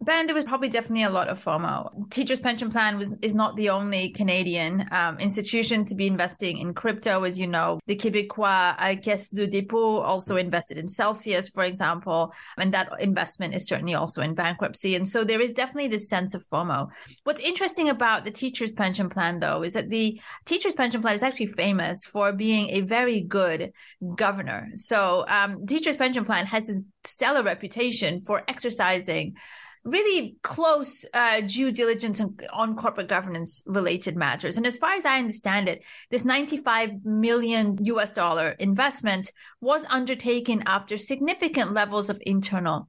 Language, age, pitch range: English, 30-49, 185-235 Hz